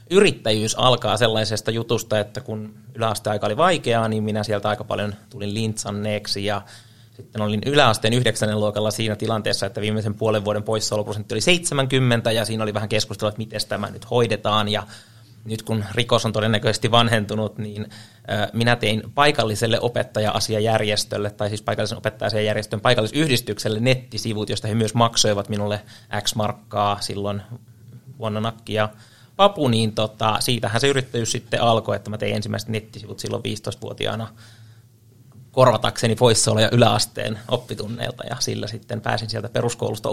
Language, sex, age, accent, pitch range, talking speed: Finnish, male, 30-49, native, 105-120 Hz, 140 wpm